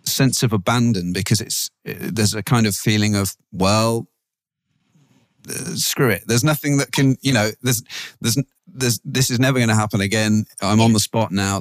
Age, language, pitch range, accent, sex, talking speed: 40-59, English, 95-120 Hz, British, male, 185 wpm